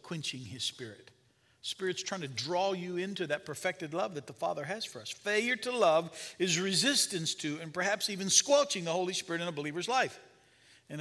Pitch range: 165-215 Hz